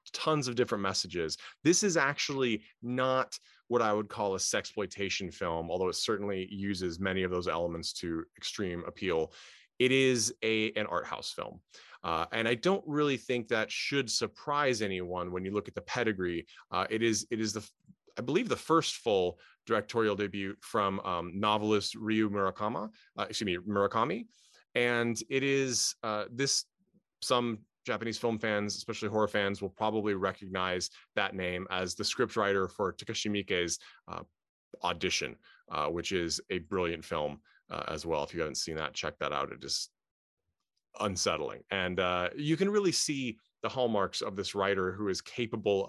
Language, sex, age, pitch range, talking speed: English, male, 30-49, 95-120 Hz, 170 wpm